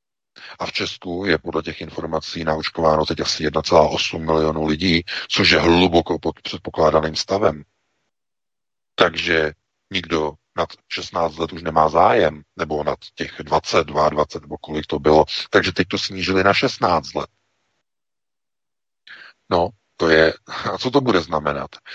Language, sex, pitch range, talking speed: Czech, male, 80-90 Hz, 140 wpm